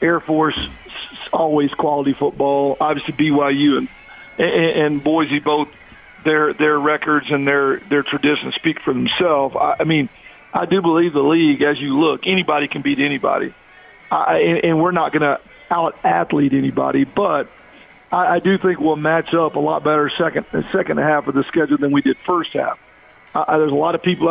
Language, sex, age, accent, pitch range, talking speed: English, male, 50-69, American, 145-165 Hz, 190 wpm